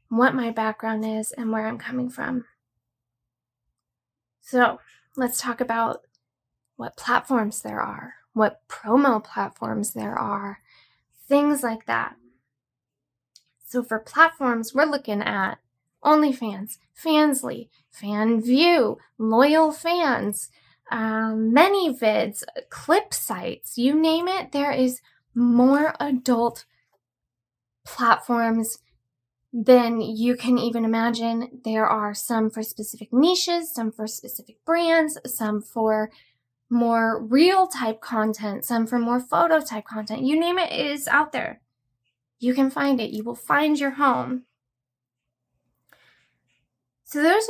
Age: 10-29